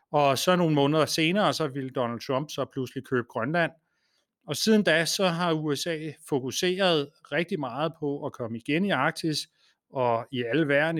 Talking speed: 170 wpm